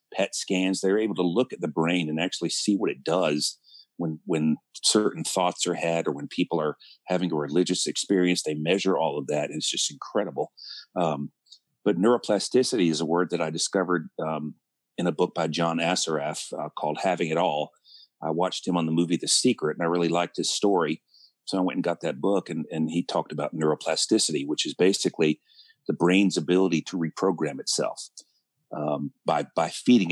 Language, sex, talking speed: English, male, 195 wpm